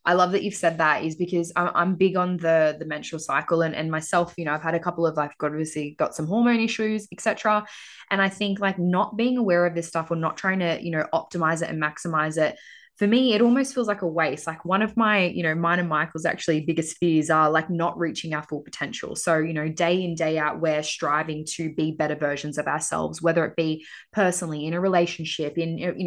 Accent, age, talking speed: Australian, 20-39, 240 wpm